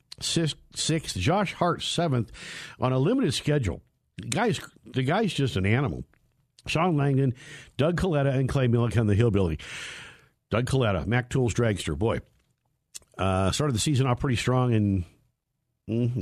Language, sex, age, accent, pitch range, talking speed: English, male, 60-79, American, 115-145 Hz, 150 wpm